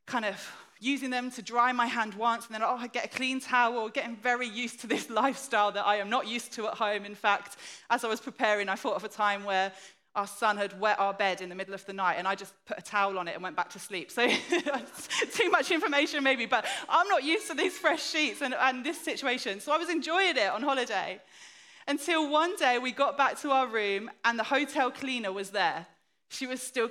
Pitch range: 215-265 Hz